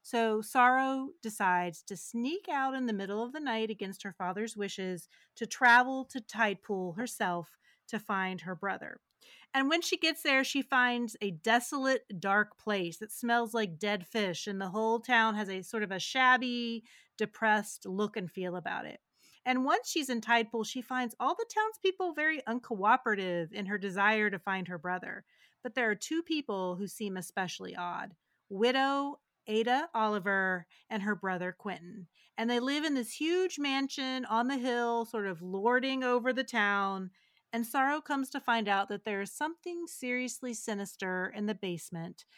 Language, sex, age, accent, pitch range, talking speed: English, female, 30-49, American, 195-255 Hz, 175 wpm